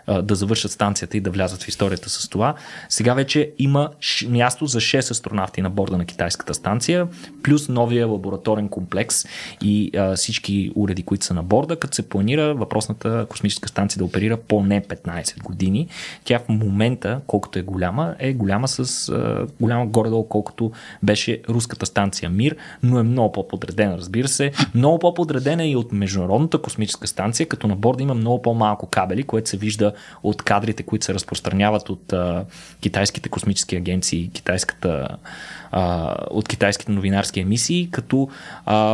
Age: 20-39